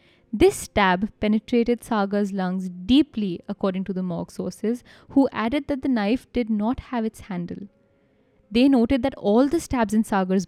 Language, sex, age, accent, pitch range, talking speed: English, female, 10-29, Indian, 205-265 Hz, 165 wpm